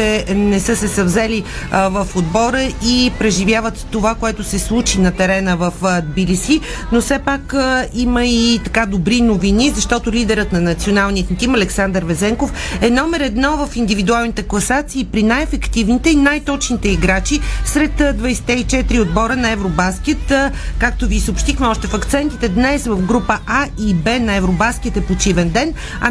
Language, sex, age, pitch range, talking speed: Bulgarian, female, 40-59, 195-245 Hz, 150 wpm